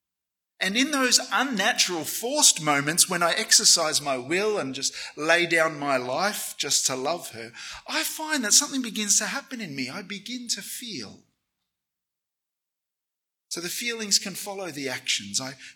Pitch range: 150-220 Hz